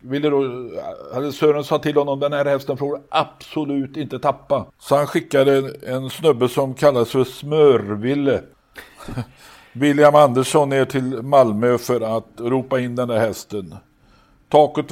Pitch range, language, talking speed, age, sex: 115-140 Hz, Swedish, 135 wpm, 60-79, male